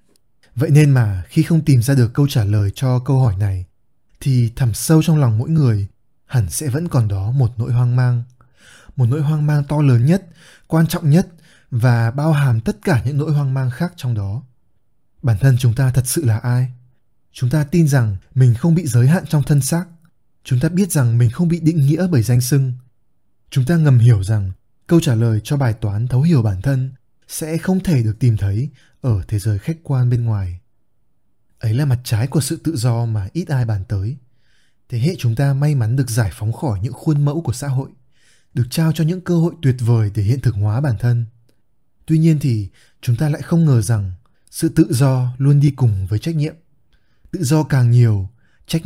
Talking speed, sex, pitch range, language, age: 220 wpm, male, 115-150 Hz, Vietnamese, 20-39